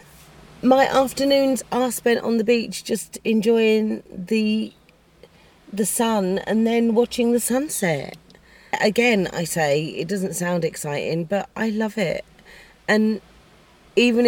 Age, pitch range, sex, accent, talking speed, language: 40-59, 180-225 Hz, female, British, 125 wpm, English